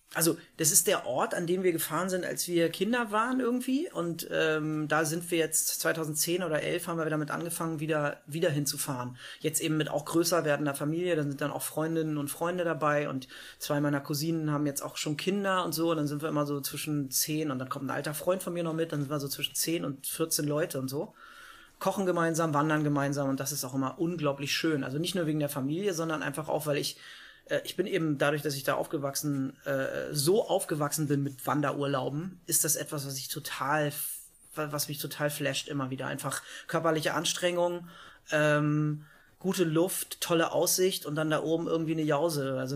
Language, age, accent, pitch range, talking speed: German, 30-49, German, 145-170 Hz, 205 wpm